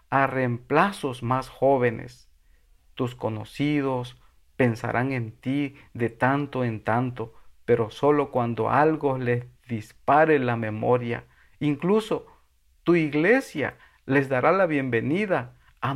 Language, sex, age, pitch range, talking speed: Spanish, male, 50-69, 110-135 Hz, 110 wpm